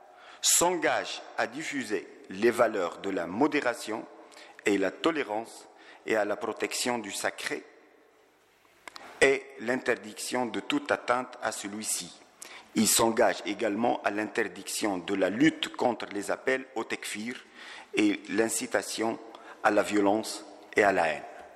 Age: 50-69